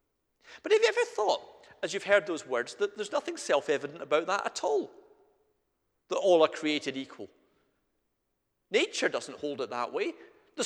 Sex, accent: male, British